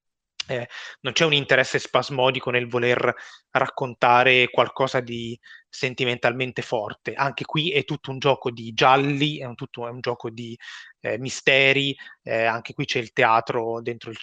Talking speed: 150 wpm